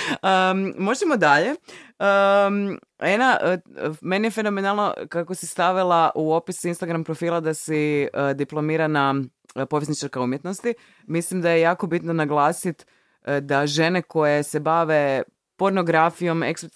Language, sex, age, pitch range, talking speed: Croatian, female, 20-39, 145-190 Hz, 115 wpm